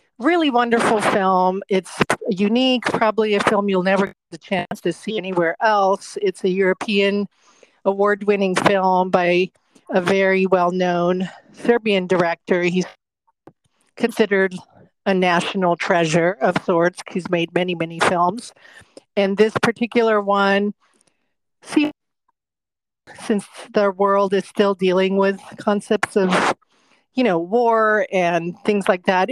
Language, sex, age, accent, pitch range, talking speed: English, female, 50-69, American, 185-225 Hz, 125 wpm